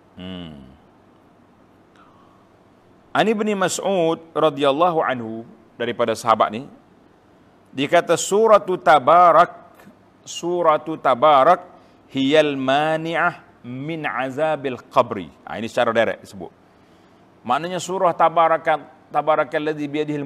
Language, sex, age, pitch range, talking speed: Malay, male, 40-59, 120-160 Hz, 90 wpm